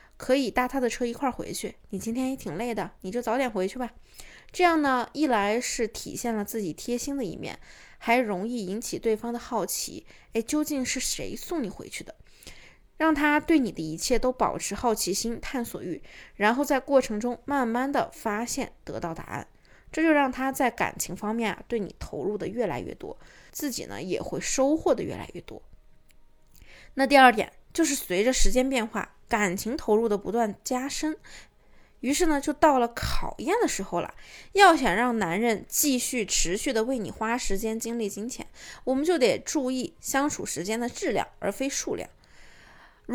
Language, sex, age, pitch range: Chinese, female, 20-39, 215-275 Hz